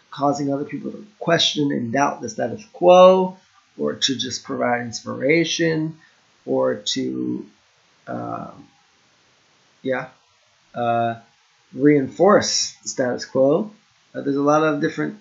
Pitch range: 110-140 Hz